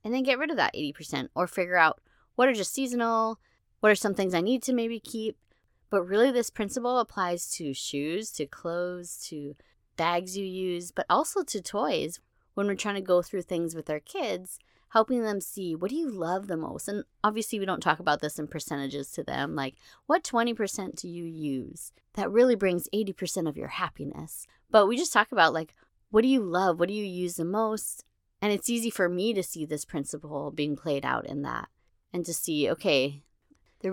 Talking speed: 210 wpm